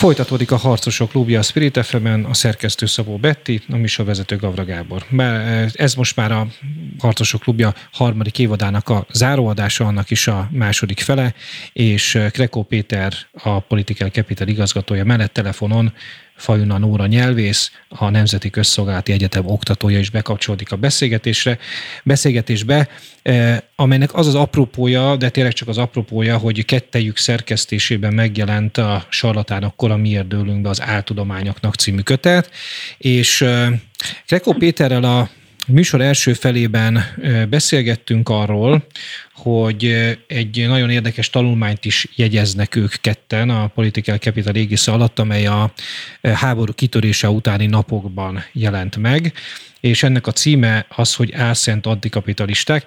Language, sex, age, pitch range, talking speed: Hungarian, male, 30-49, 105-125 Hz, 130 wpm